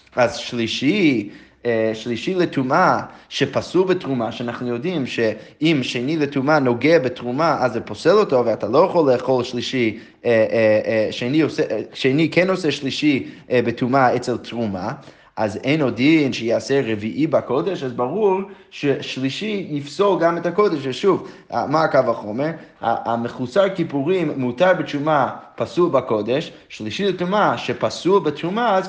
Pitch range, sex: 120-170 Hz, male